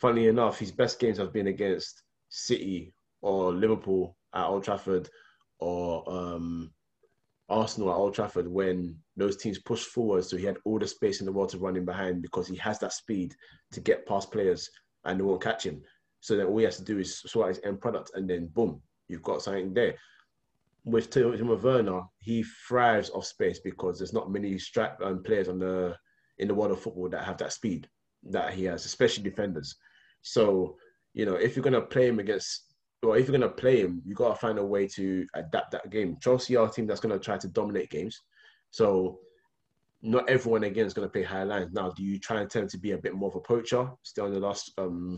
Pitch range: 95-115 Hz